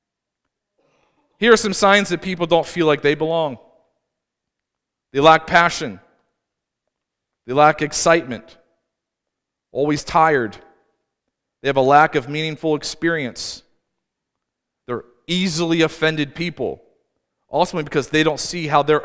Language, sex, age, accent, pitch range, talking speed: English, male, 40-59, American, 140-180 Hz, 115 wpm